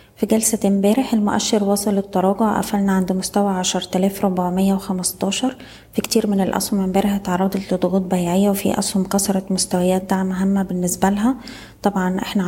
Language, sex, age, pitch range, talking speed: Arabic, female, 20-39, 185-200 Hz, 135 wpm